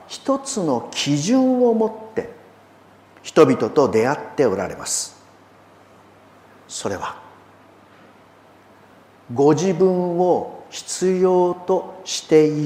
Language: Japanese